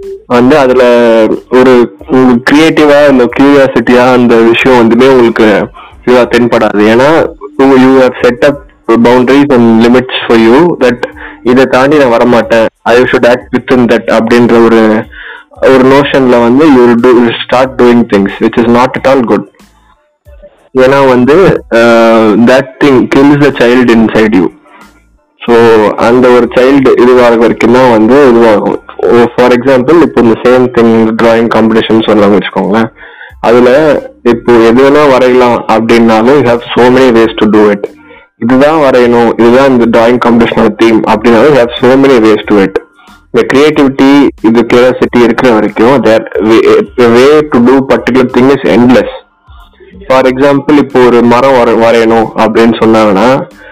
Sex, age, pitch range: male, 20-39, 115-130 Hz